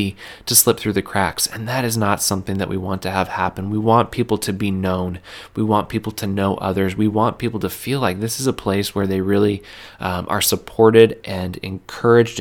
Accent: American